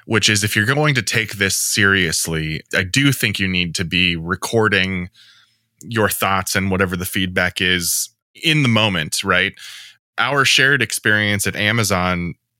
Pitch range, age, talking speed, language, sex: 95-115 Hz, 20-39, 155 wpm, English, male